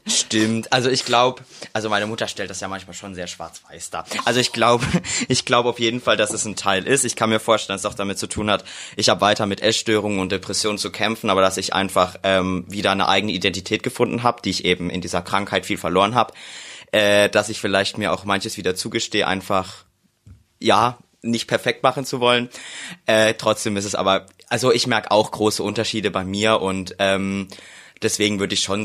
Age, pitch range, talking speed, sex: 20-39, 95-115 Hz, 210 wpm, male